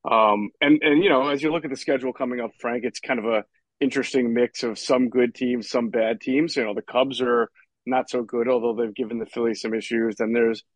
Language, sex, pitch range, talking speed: English, male, 120-160 Hz, 245 wpm